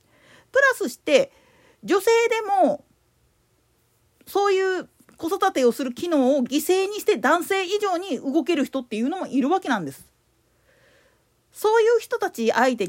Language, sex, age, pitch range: Japanese, female, 40-59, 245-390 Hz